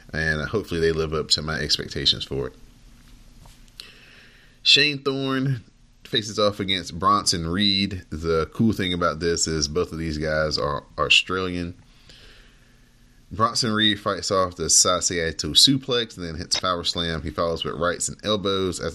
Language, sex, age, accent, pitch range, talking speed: English, male, 30-49, American, 85-125 Hz, 150 wpm